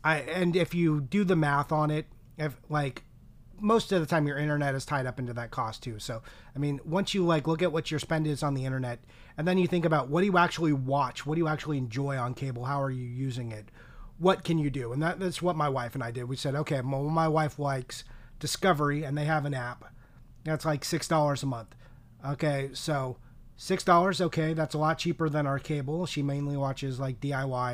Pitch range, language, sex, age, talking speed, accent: 130-165 Hz, English, male, 30-49, 235 wpm, American